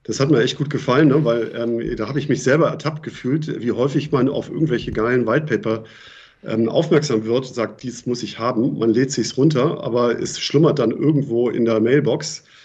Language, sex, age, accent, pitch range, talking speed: German, male, 40-59, German, 115-140 Hz, 210 wpm